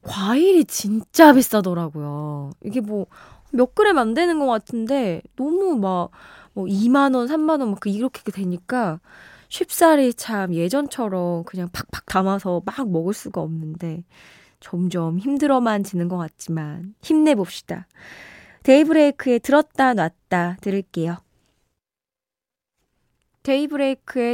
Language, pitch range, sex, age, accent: Korean, 180-280 Hz, female, 20-39, native